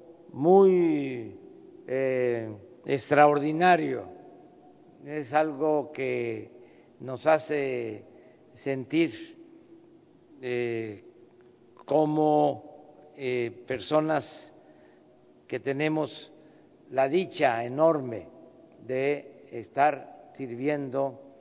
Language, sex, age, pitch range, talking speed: Spanish, male, 50-69, 130-170 Hz, 60 wpm